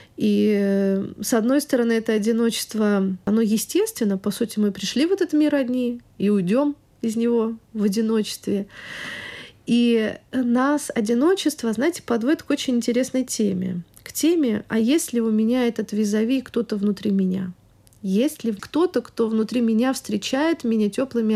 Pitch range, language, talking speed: 210-250 Hz, Russian, 145 wpm